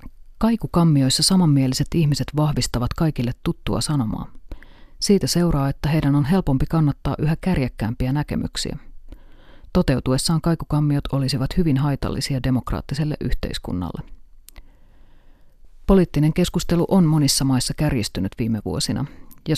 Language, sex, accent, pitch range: Finnish, female, native, 130-160 Hz